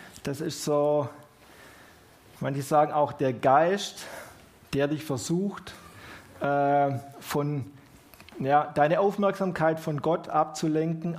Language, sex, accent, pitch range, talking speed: German, male, German, 135-165 Hz, 90 wpm